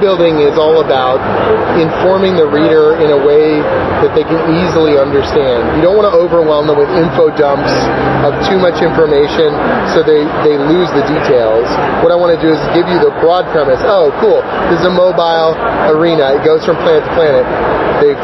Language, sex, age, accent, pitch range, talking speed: English, male, 30-49, American, 155-205 Hz, 195 wpm